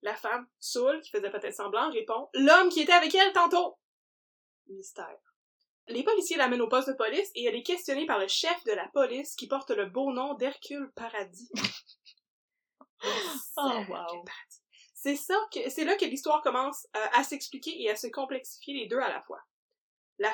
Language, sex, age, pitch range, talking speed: French, female, 20-39, 245-385 Hz, 190 wpm